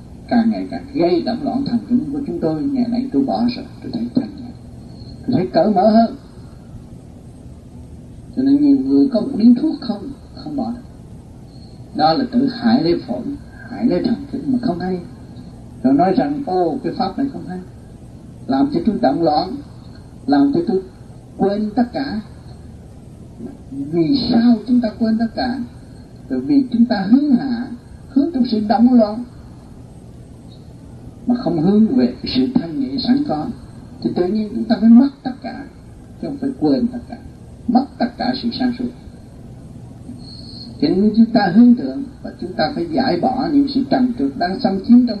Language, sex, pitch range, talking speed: Vietnamese, male, 225-270 Hz, 180 wpm